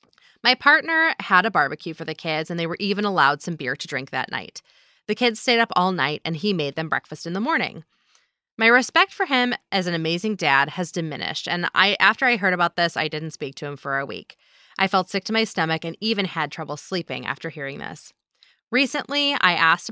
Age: 20-39